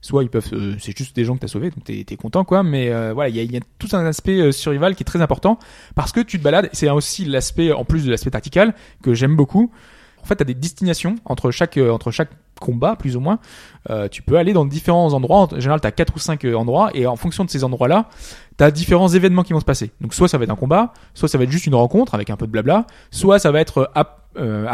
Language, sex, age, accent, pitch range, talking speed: French, male, 20-39, French, 120-175 Hz, 285 wpm